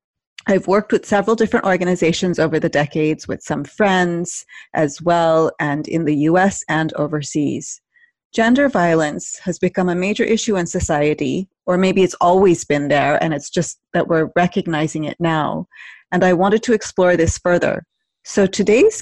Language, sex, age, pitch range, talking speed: English, female, 30-49, 160-200 Hz, 165 wpm